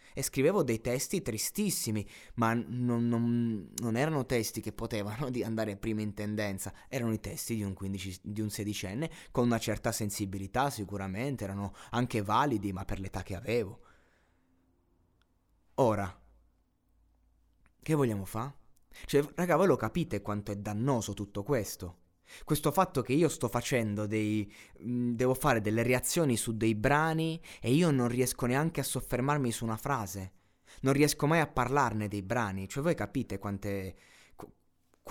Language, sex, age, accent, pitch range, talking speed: Italian, male, 20-39, native, 100-130 Hz, 150 wpm